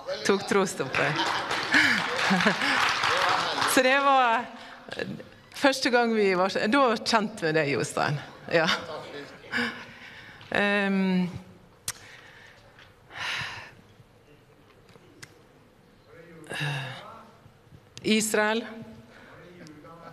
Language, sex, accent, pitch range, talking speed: English, female, Swedish, 195-245 Hz, 55 wpm